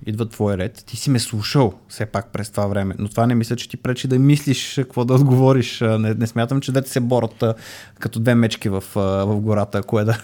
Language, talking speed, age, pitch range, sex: Bulgarian, 240 wpm, 20-39, 110-150 Hz, male